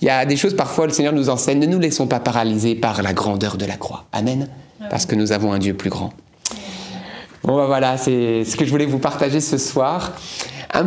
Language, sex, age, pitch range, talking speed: French, male, 30-49, 125-160 Hz, 235 wpm